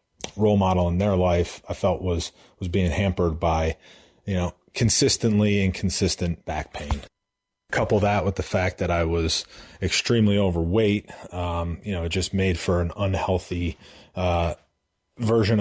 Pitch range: 90-105 Hz